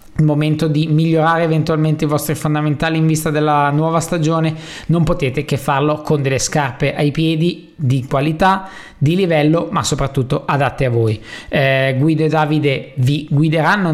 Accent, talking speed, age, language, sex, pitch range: native, 155 wpm, 20-39, Italian, male, 145-165 Hz